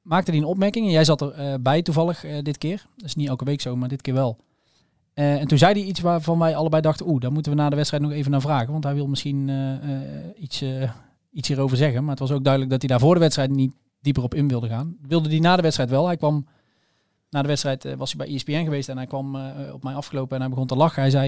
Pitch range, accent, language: 135-155 Hz, Dutch, Dutch